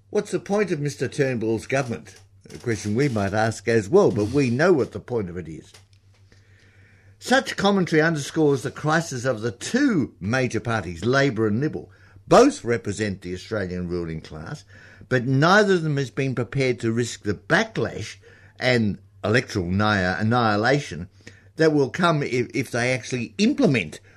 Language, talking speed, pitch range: English, 160 wpm, 100-135 Hz